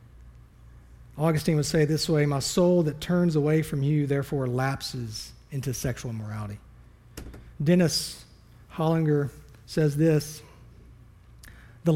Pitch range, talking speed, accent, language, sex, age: 135-175 Hz, 110 wpm, American, English, male, 40-59